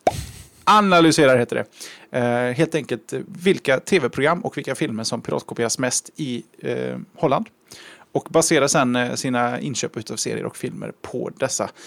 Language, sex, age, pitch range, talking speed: Swedish, male, 30-49, 120-160 Hz, 140 wpm